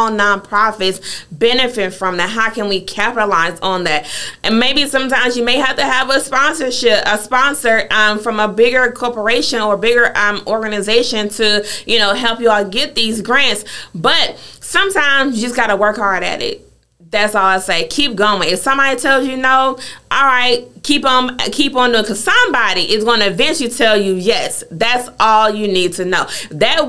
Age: 30-49